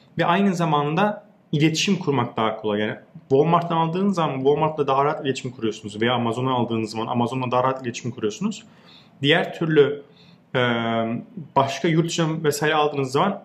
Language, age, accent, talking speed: Turkish, 30-49, native, 145 wpm